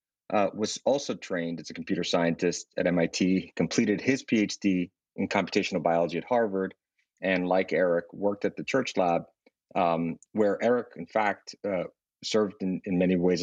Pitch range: 85-100 Hz